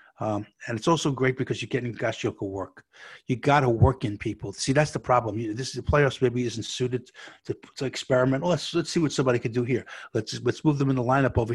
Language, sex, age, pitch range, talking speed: English, male, 60-79, 110-140 Hz, 255 wpm